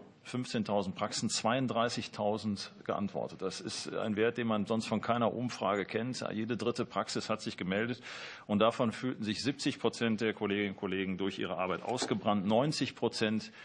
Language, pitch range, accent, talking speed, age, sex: German, 105-125 Hz, German, 160 wpm, 40-59, male